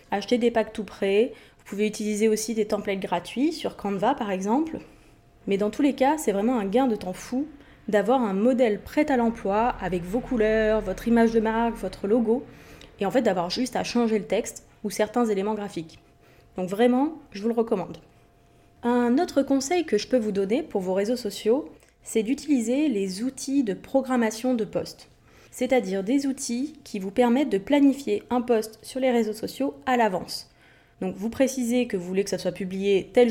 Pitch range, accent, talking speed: 200-255 Hz, French, 195 wpm